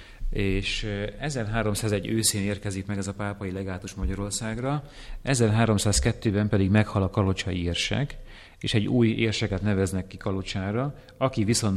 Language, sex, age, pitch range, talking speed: English, male, 30-49, 95-110 Hz, 125 wpm